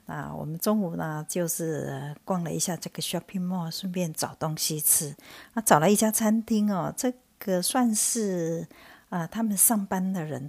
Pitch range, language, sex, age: 155-200 Hz, Chinese, female, 50-69